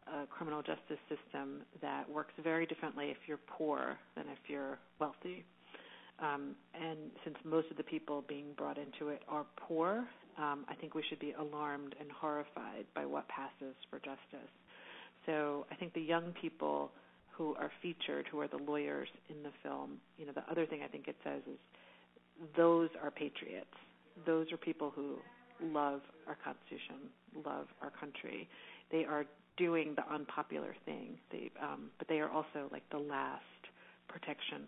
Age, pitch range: 40-59, 140-160 Hz